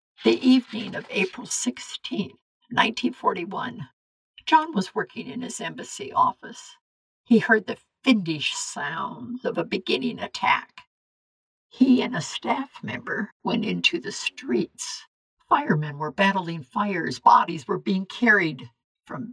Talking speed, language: 125 wpm, English